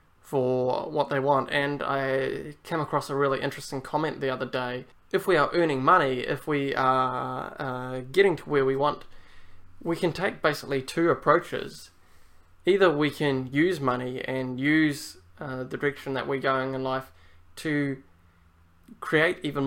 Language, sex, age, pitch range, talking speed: English, male, 20-39, 125-145 Hz, 160 wpm